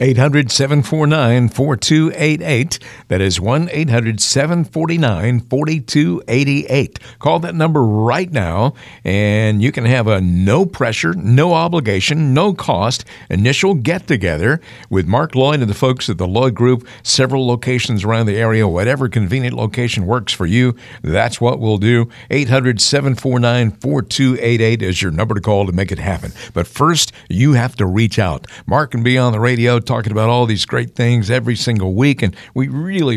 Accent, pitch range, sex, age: American, 105-135 Hz, male, 50-69